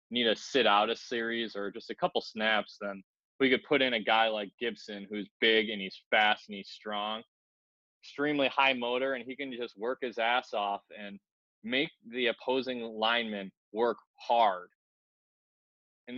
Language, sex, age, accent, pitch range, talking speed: English, male, 20-39, American, 110-130 Hz, 175 wpm